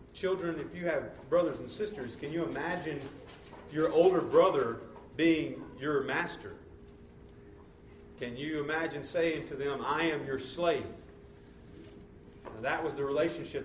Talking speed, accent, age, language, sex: 130 wpm, American, 40-59, English, male